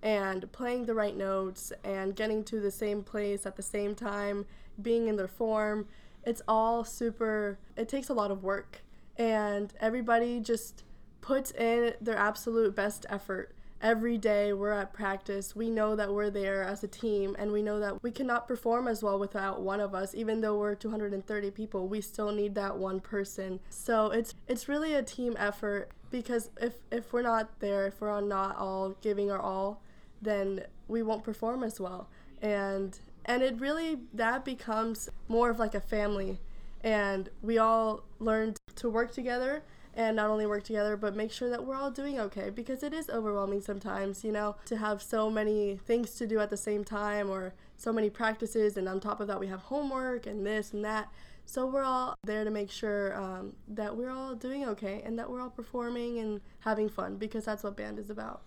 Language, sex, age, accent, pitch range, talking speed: English, female, 10-29, American, 200-230 Hz, 195 wpm